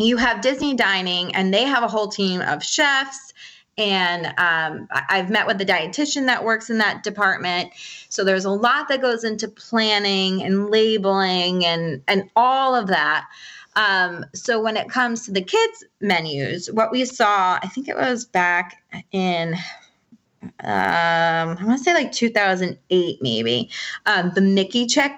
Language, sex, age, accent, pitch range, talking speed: English, female, 20-39, American, 180-230 Hz, 165 wpm